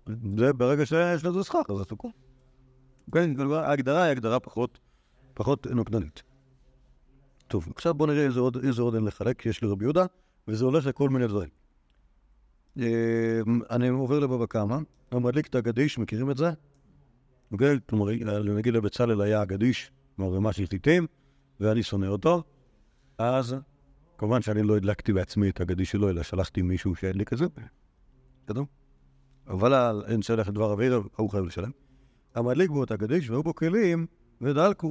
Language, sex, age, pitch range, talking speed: Hebrew, male, 50-69, 110-140 Hz, 145 wpm